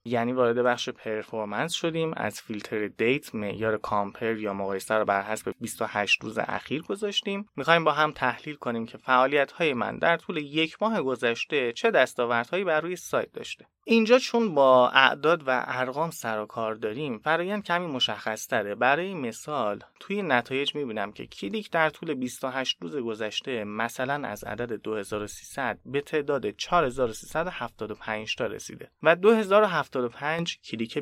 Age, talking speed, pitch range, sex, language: 30-49, 145 wpm, 115-160 Hz, male, Persian